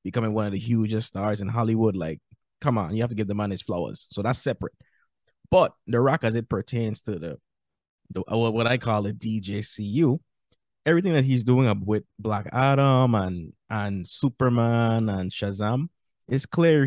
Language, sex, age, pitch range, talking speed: English, male, 20-39, 105-130 Hz, 180 wpm